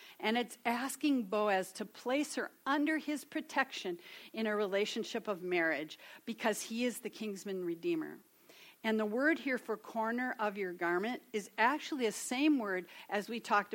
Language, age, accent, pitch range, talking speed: English, 50-69, American, 185-245 Hz, 165 wpm